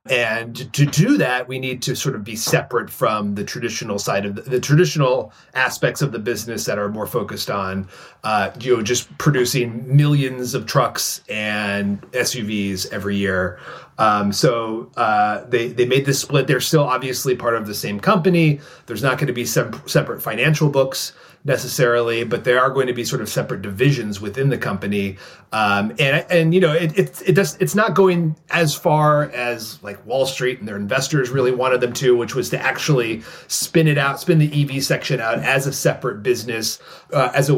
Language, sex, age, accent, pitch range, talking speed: English, male, 30-49, American, 115-150 Hz, 195 wpm